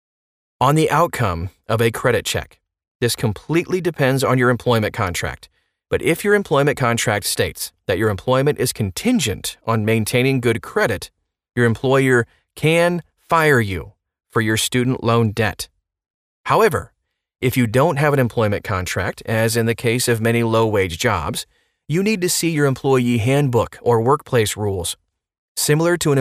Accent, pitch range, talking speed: American, 105-140 Hz, 155 wpm